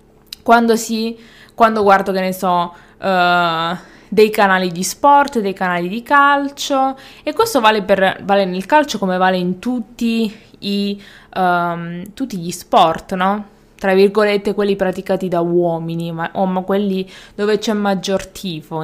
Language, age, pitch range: Italian, 20-39, 185-220 Hz